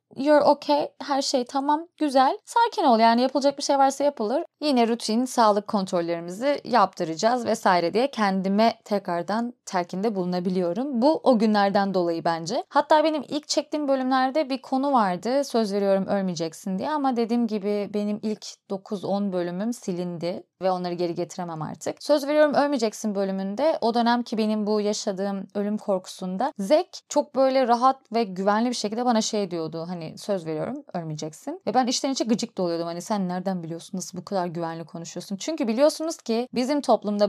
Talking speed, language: 165 wpm, Turkish